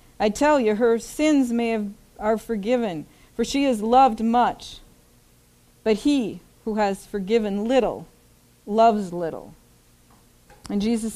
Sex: female